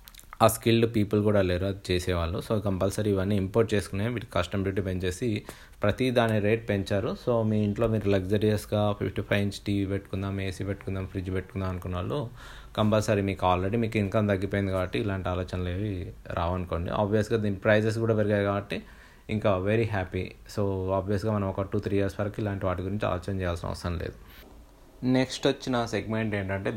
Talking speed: 165 wpm